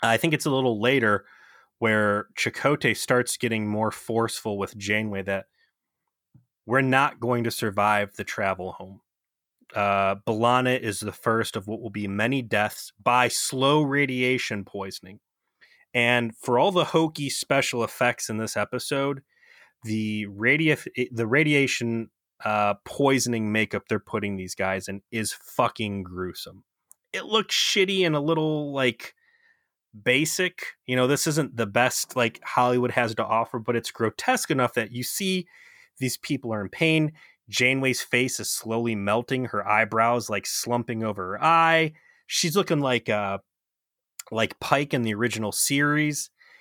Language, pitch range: English, 105-135 Hz